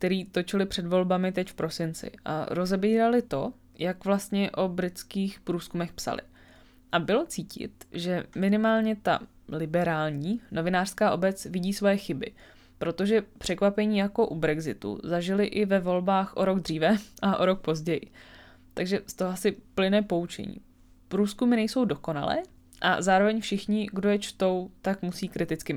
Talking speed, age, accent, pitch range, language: 145 wpm, 20-39, native, 155-200 Hz, Czech